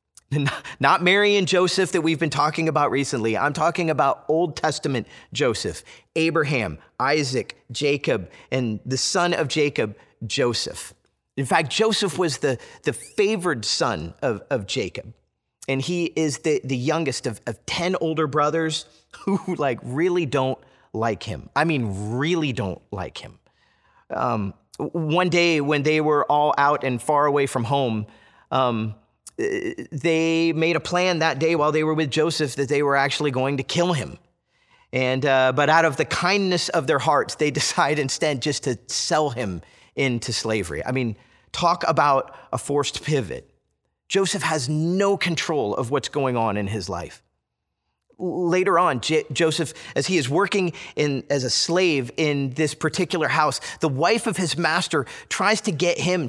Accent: American